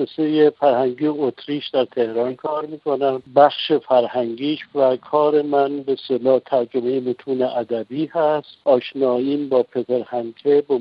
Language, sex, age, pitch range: Persian, male, 60-79, 120-145 Hz